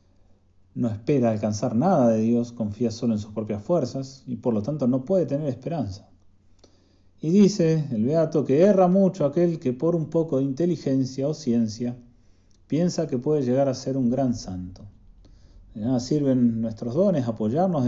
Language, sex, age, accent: Spanish, male, 40-59, Argentinian